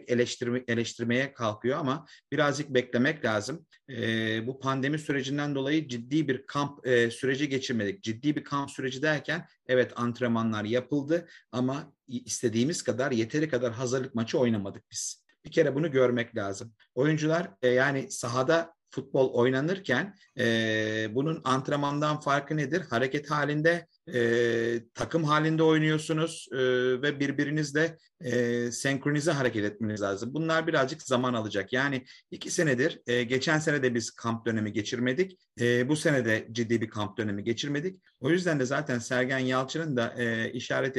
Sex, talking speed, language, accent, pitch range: male, 140 wpm, Turkish, native, 120-150 Hz